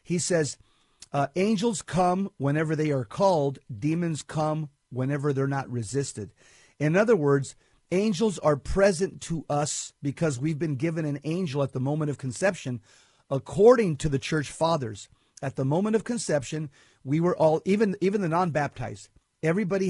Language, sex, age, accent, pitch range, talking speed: English, male, 40-59, American, 145-195 Hz, 155 wpm